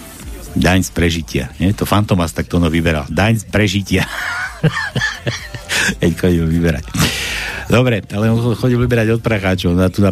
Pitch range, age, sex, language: 85-105 Hz, 60-79, male, Slovak